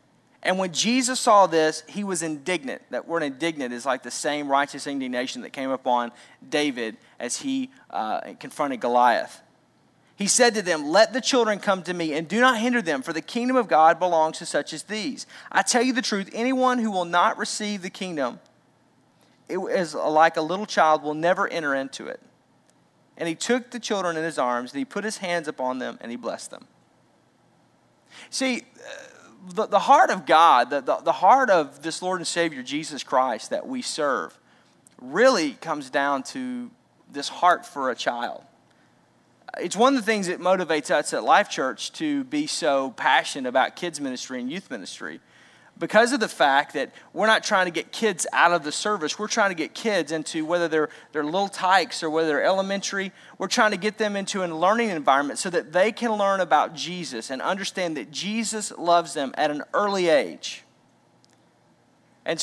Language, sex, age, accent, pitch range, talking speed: English, male, 40-59, American, 160-220 Hz, 190 wpm